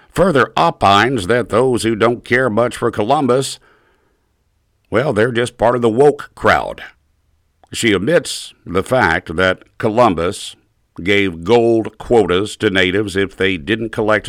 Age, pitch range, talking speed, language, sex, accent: 60-79, 95-110 Hz, 140 wpm, English, male, American